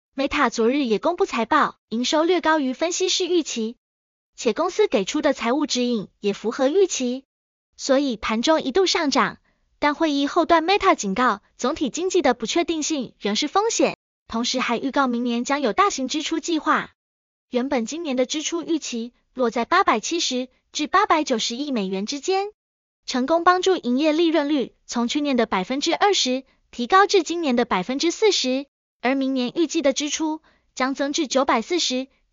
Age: 20-39